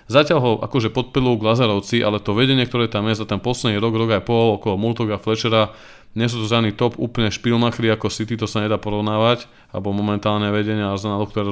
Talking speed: 205 wpm